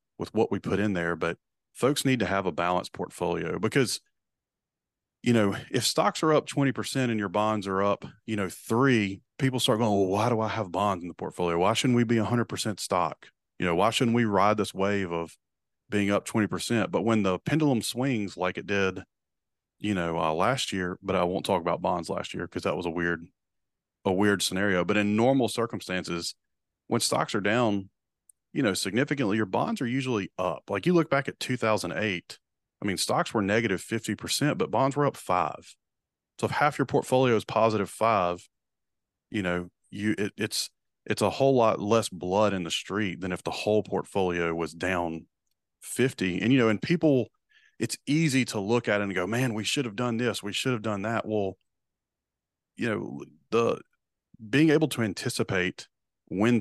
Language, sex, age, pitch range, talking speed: English, male, 30-49, 95-120 Hz, 200 wpm